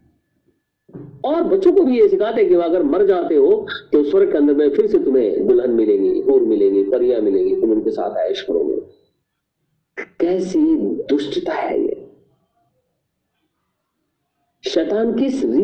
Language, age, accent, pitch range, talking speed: Hindi, 50-69, native, 310-390 Hz, 110 wpm